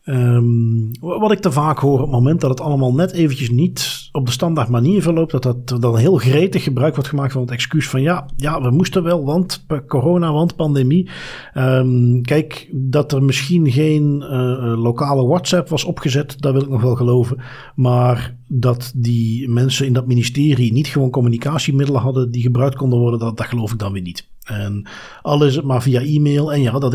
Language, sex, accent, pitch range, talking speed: Dutch, male, Dutch, 125-155 Hz, 190 wpm